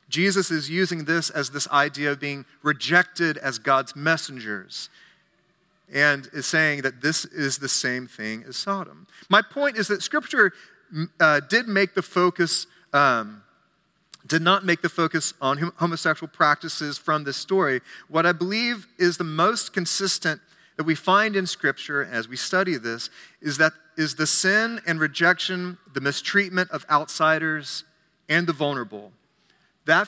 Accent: American